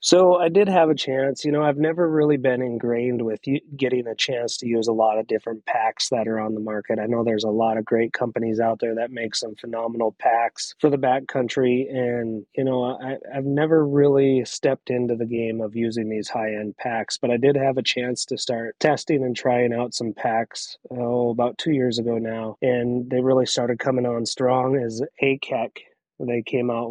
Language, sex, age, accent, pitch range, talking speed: English, male, 30-49, American, 115-135 Hz, 205 wpm